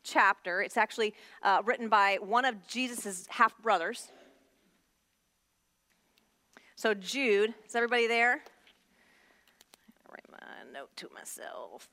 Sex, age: female, 30-49